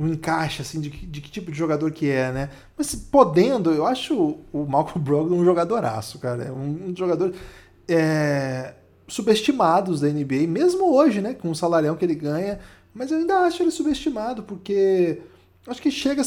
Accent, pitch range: Brazilian, 150-205 Hz